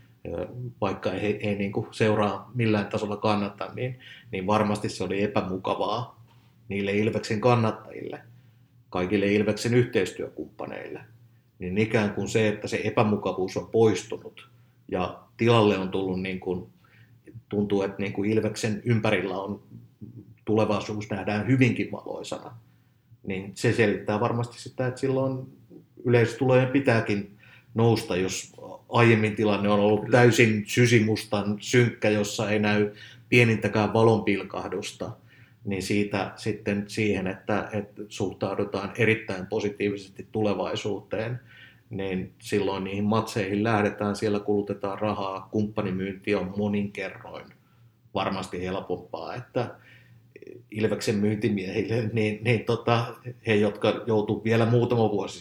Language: Finnish